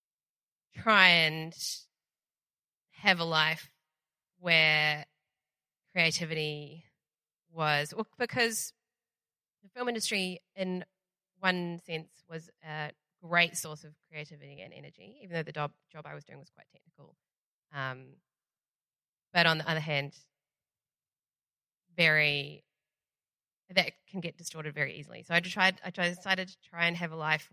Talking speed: 130 wpm